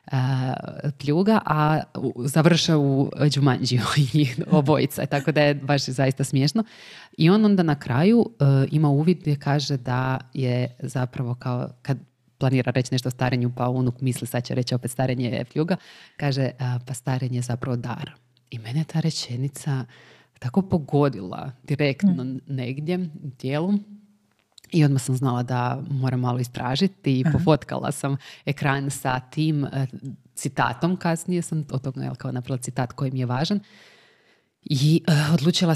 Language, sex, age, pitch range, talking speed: Croatian, female, 30-49, 130-155 Hz, 140 wpm